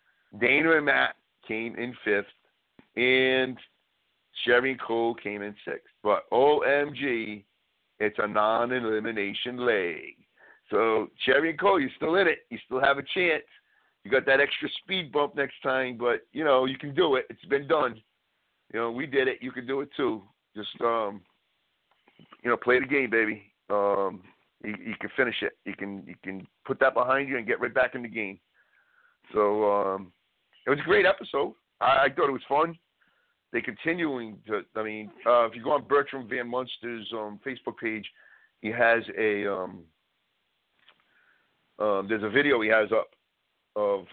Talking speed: 175 wpm